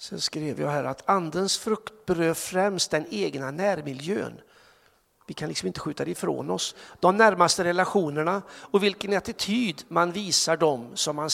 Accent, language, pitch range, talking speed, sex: native, Swedish, 180-230 Hz, 165 wpm, male